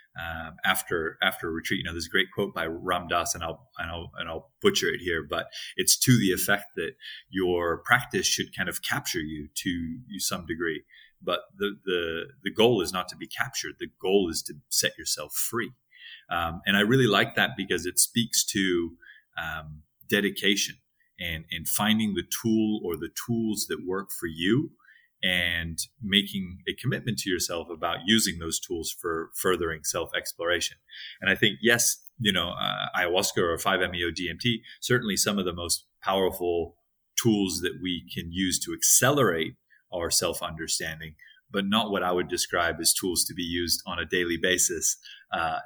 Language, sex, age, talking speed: English, male, 30-49, 175 wpm